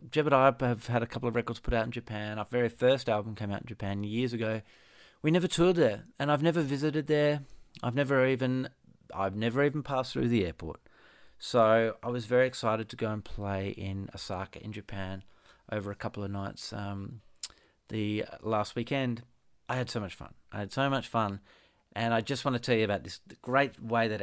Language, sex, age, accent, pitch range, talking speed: English, male, 40-59, Australian, 105-135 Hz, 215 wpm